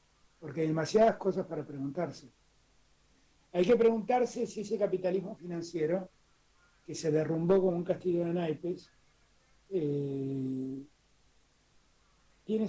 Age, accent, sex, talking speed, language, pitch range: 60-79, Argentinian, male, 110 wpm, Spanish, 155-200 Hz